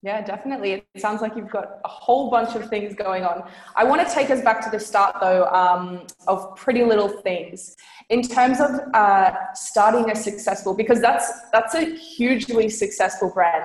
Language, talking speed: English, 190 wpm